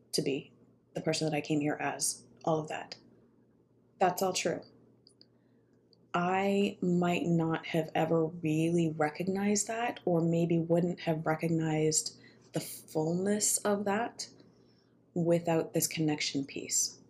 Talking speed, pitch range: 125 wpm, 150-170 Hz